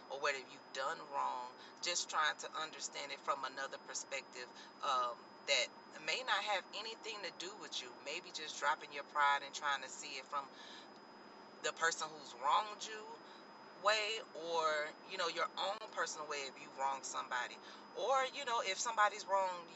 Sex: female